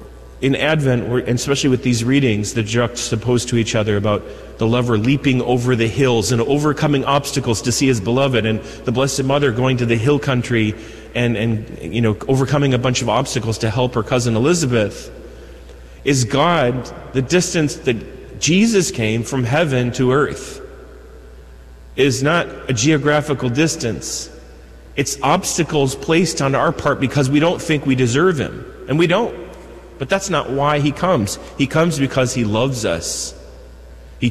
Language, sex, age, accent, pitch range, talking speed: English, male, 30-49, American, 115-145 Hz, 170 wpm